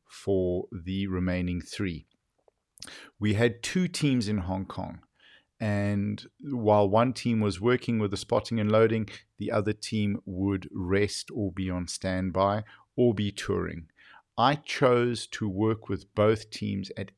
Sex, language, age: male, English, 50-69